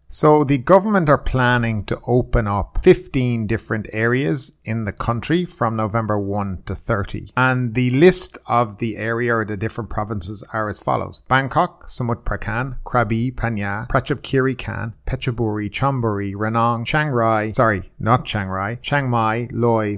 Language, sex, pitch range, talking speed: English, male, 105-130 Hz, 155 wpm